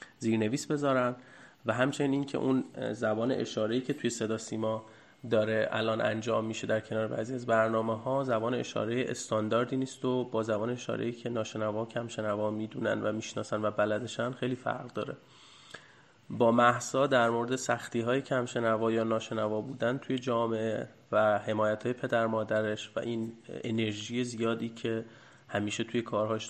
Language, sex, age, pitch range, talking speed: Persian, male, 30-49, 110-125 Hz, 155 wpm